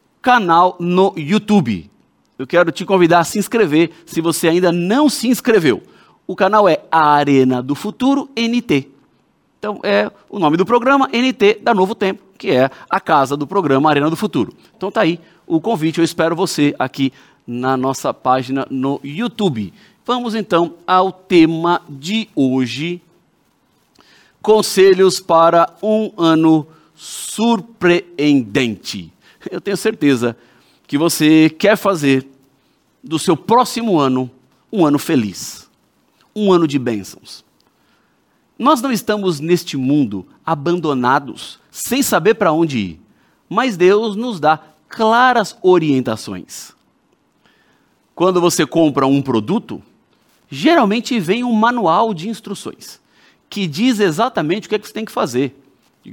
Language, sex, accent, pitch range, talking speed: Portuguese, male, Brazilian, 140-215 Hz, 135 wpm